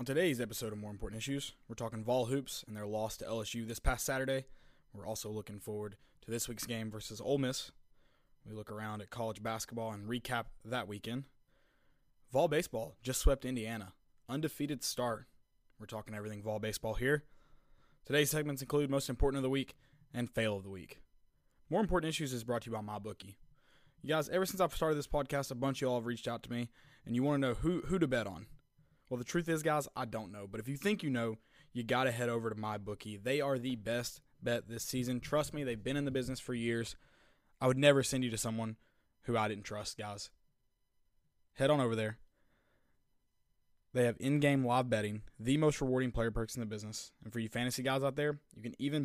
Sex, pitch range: male, 110-135 Hz